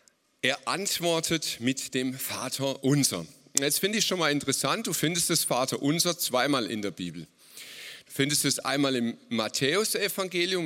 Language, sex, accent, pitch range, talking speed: German, male, German, 130-170 Hz, 150 wpm